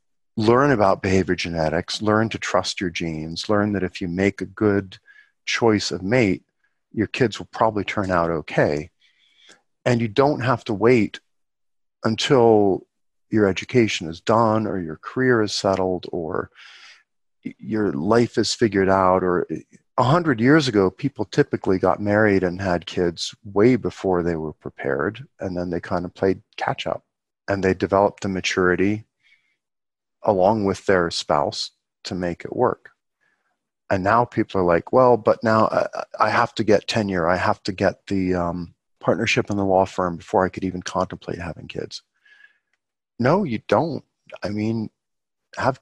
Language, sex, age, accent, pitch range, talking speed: English, male, 40-59, American, 90-115 Hz, 160 wpm